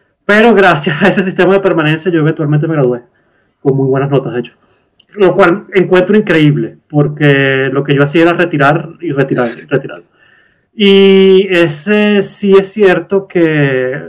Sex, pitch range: male, 135-175 Hz